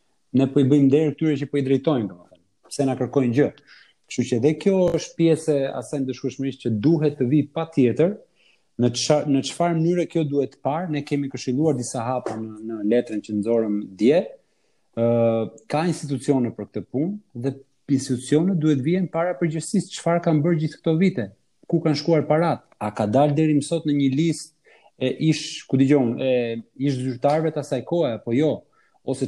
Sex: male